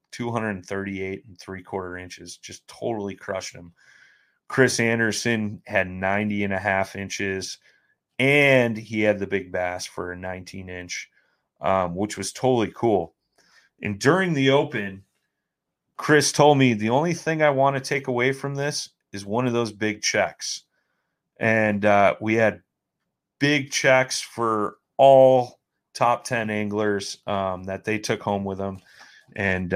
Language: English